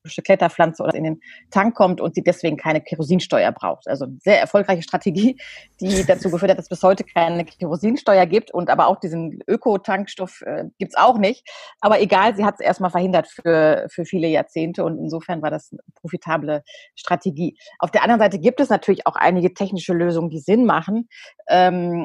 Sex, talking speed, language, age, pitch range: female, 195 wpm, German, 30-49, 170-210 Hz